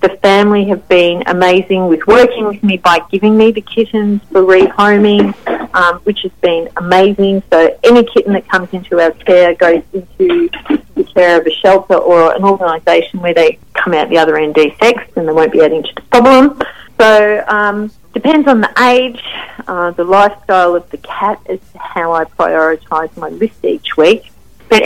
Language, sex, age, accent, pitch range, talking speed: English, female, 40-59, Australian, 175-220 Hz, 185 wpm